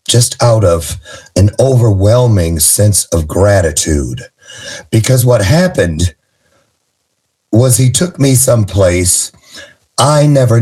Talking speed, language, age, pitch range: 100 wpm, English, 60-79, 90-120 Hz